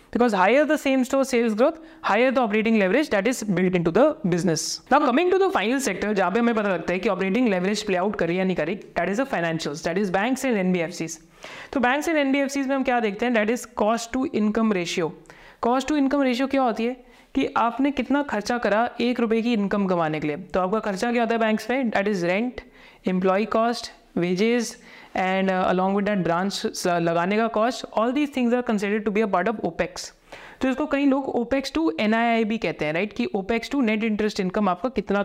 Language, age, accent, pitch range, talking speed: Hindi, 30-49, native, 200-250 Hz, 230 wpm